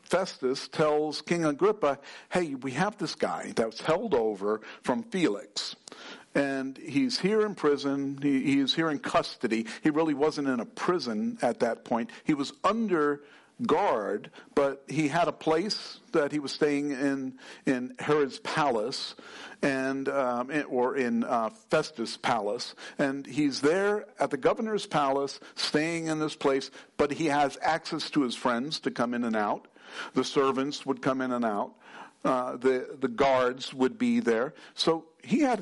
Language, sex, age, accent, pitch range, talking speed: English, male, 50-69, American, 135-165 Hz, 165 wpm